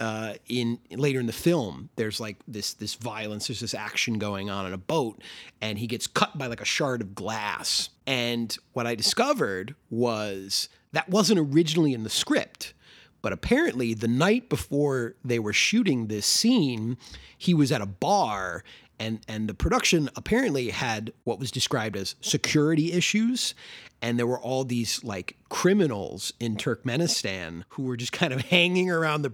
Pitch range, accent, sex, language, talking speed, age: 115-155 Hz, American, male, English, 170 wpm, 30-49